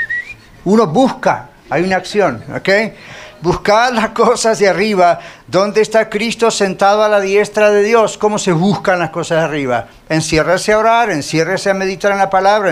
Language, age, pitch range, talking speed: Spanish, 50-69, 155-210 Hz, 170 wpm